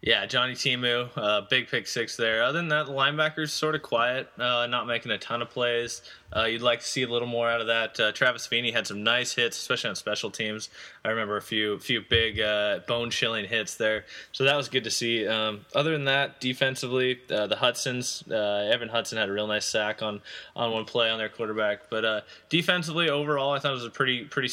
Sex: male